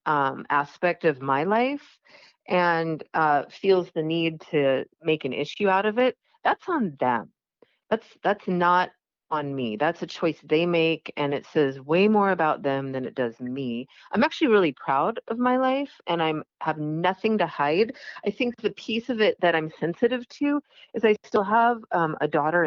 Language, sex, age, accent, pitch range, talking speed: English, female, 40-59, American, 155-210 Hz, 190 wpm